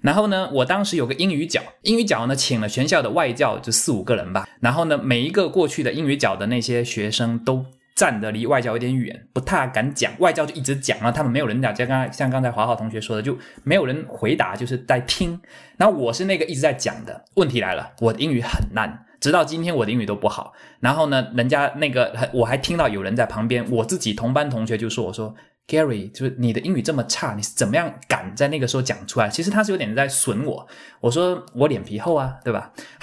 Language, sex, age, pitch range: Chinese, male, 20-39, 115-140 Hz